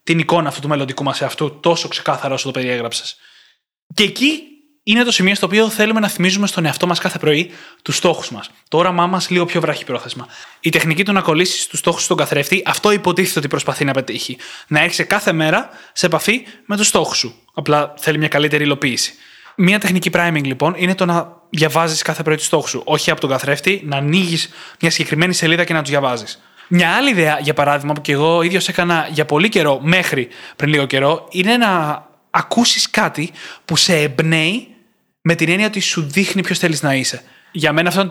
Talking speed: 205 wpm